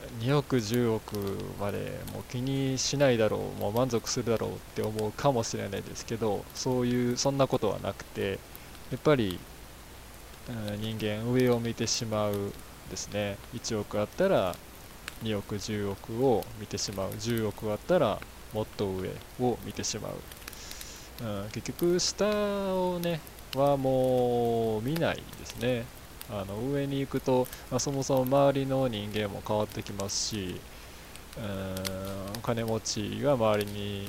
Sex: male